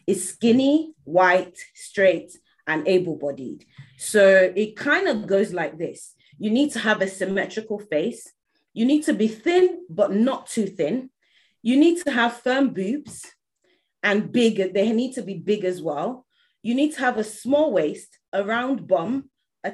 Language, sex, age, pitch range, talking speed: English, female, 30-49, 180-245 Hz, 165 wpm